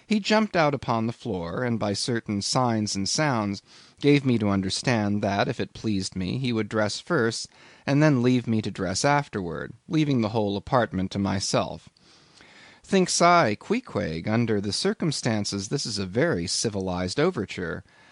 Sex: male